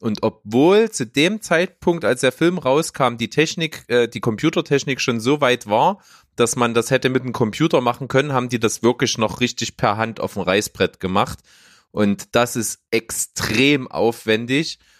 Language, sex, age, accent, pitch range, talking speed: German, male, 30-49, German, 110-140 Hz, 170 wpm